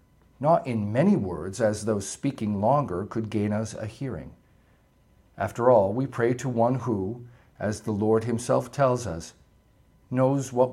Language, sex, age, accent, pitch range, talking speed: English, male, 50-69, American, 105-145 Hz, 155 wpm